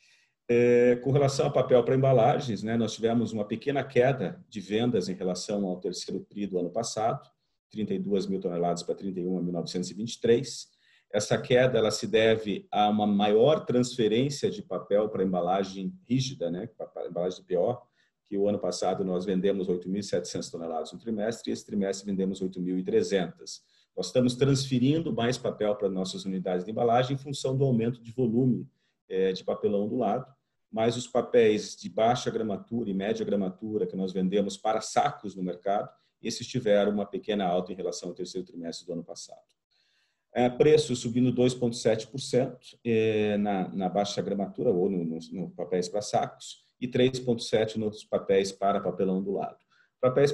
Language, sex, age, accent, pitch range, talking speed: Portuguese, male, 40-59, Brazilian, 95-125 Hz, 160 wpm